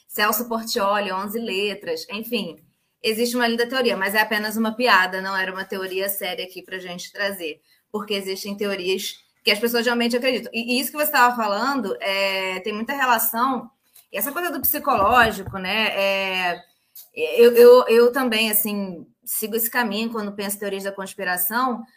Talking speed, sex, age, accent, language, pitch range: 175 wpm, female, 20-39, Brazilian, Portuguese, 205-250 Hz